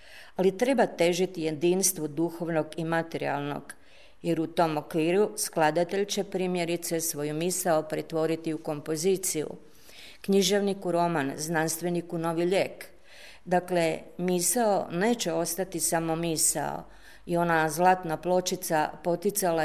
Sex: female